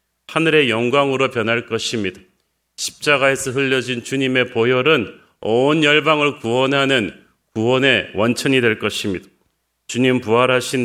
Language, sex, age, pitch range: Korean, male, 40-59, 115-145 Hz